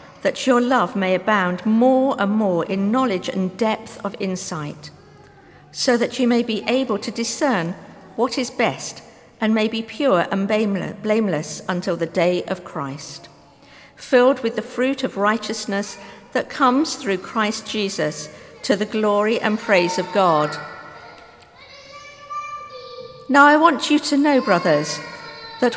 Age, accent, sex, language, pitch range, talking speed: 50-69, British, female, English, 170-255 Hz, 145 wpm